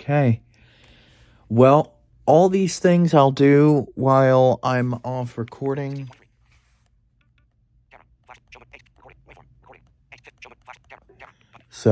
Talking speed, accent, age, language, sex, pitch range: 60 wpm, American, 30-49, English, male, 95-120 Hz